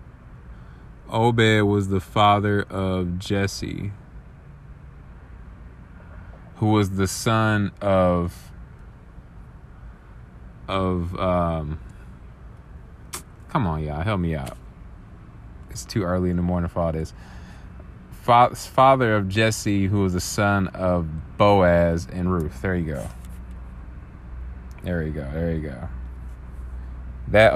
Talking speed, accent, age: 105 wpm, American, 30-49